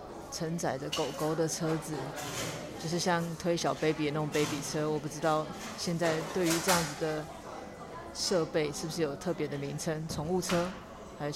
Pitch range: 150-165 Hz